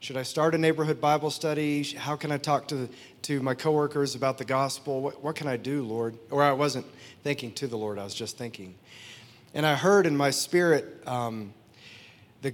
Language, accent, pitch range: English, American, 125-160 Hz